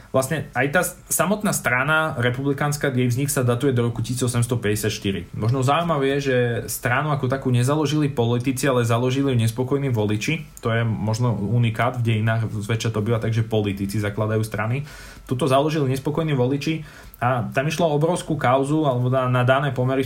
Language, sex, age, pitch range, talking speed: Slovak, male, 20-39, 115-135 Hz, 165 wpm